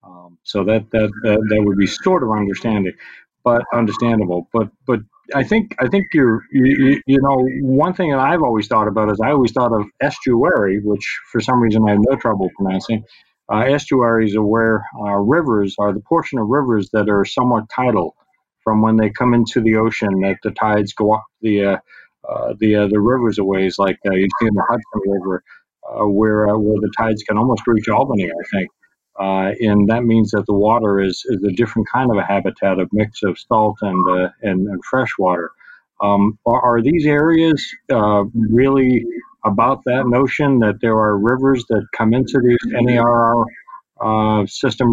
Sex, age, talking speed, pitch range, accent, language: male, 40-59, 200 wpm, 105-120 Hz, American, English